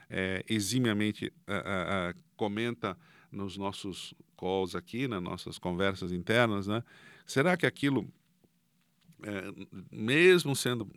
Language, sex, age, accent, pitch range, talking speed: Portuguese, male, 50-69, Brazilian, 100-150 Hz, 120 wpm